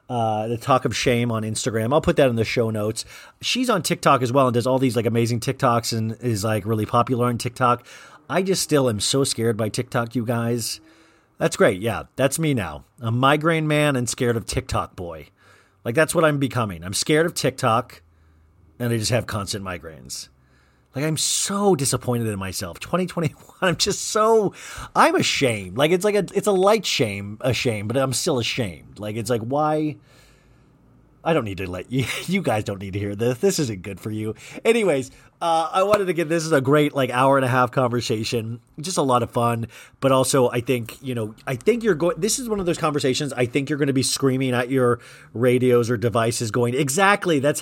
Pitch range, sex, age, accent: 115-155 Hz, male, 40-59, American